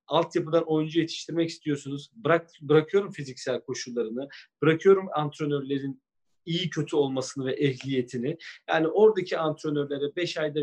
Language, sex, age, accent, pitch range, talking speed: Turkish, male, 40-59, native, 140-165 Hz, 115 wpm